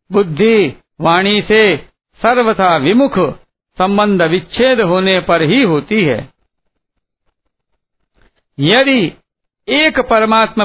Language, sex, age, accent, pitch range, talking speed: Hindi, male, 60-79, native, 175-215 Hz, 85 wpm